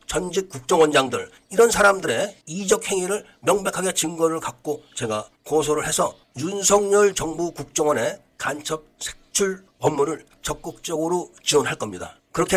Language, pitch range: Korean, 140-180 Hz